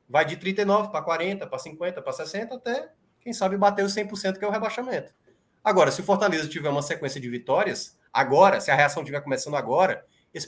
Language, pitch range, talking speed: Portuguese, 165-205 Hz, 205 wpm